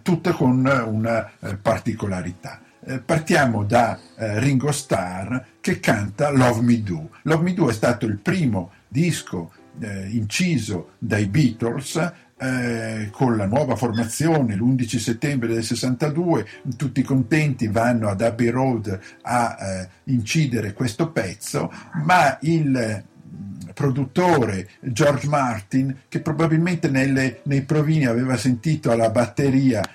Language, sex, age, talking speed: Italian, male, 50-69, 125 wpm